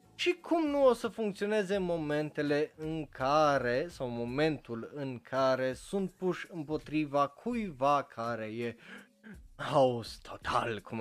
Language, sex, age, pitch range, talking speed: Romanian, male, 20-39, 140-220 Hz, 120 wpm